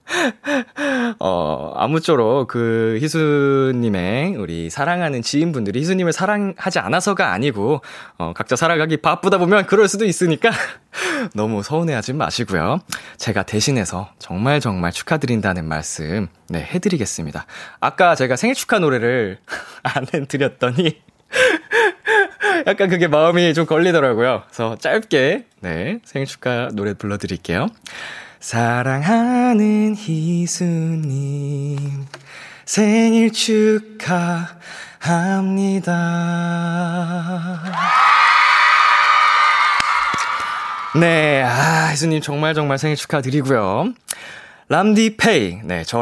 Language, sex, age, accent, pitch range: Korean, male, 20-39, native, 120-185 Hz